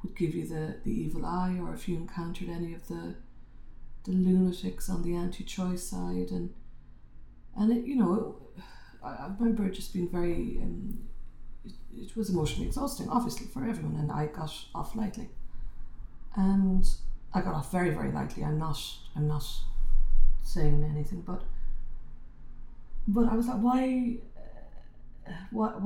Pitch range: 120-205 Hz